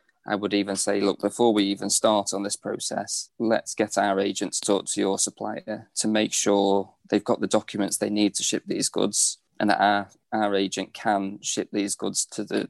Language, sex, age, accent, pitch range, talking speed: English, male, 20-39, British, 100-110 Hz, 215 wpm